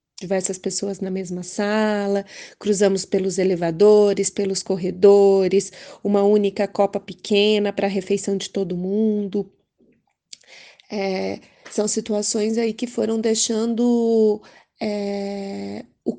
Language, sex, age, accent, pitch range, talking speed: Portuguese, female, 20-39, Brazilian, 195-220 Hz, 100 wpm